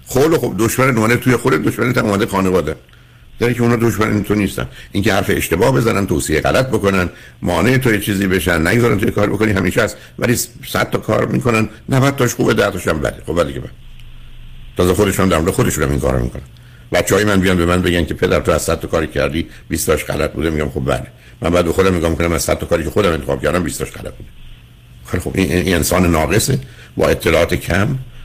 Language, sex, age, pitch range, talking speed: Persian, male, 60-79, 80-110 Hz, 175 wpm